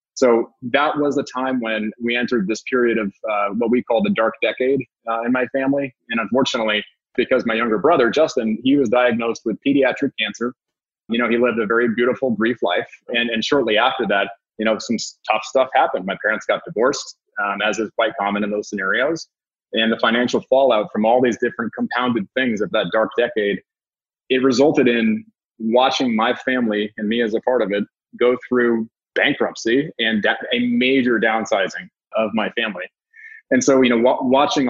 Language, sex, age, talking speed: English, male, 30-49, 190 wpm